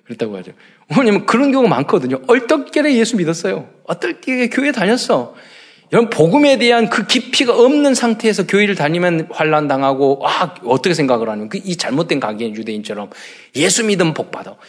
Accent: native